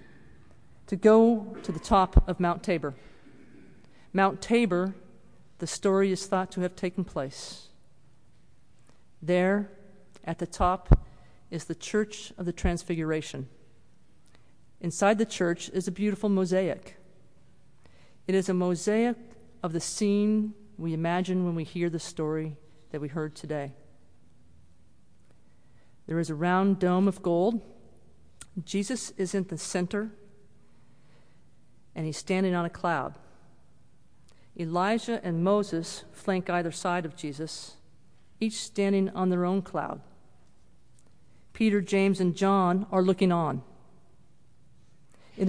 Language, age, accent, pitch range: English, 40-59, American, 165-200 Hz